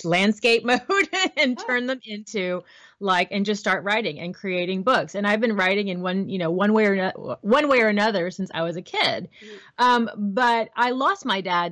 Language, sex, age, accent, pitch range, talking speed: English, female, 30-49, American, 175-220 Hz, 210 wpm